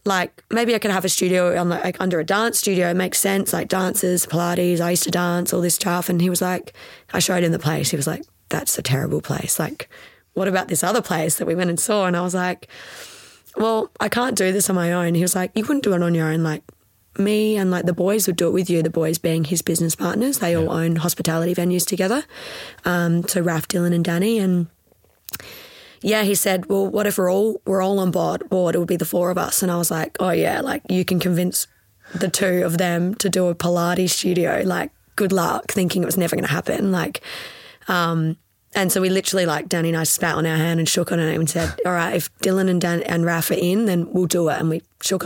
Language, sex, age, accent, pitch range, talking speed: English, female, 20-39, Australian, 170-195 Hz, 250 wpm